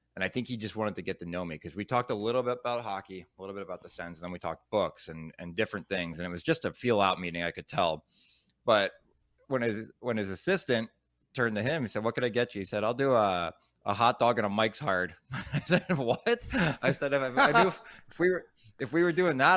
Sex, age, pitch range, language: male, 20-39, 100-130 Hz, English